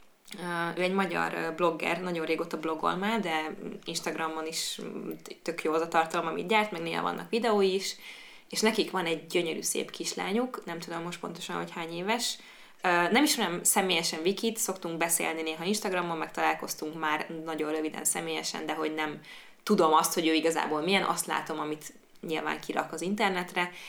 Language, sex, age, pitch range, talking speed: Hungarian, female, 20-39, 155-190 Hz, 170 wpm